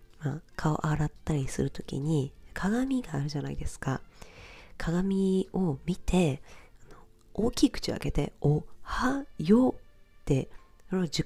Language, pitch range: Japanese, 145-215 Hz